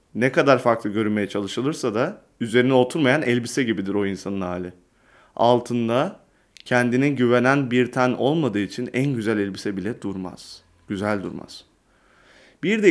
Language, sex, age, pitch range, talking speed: Turkish, male, 30-49, 110-145 Hz, 135 wpm